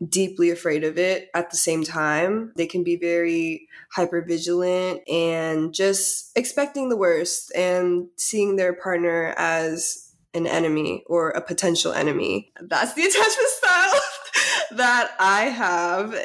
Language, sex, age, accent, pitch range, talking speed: English, female, 20-39, American, 170-210 Hz, 135 wpm